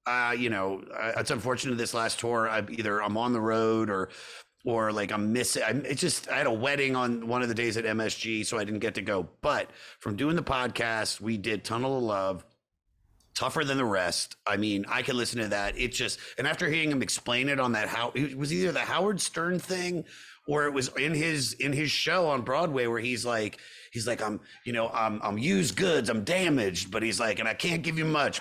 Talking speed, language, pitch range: 235 wpm, English, 110-145 Hz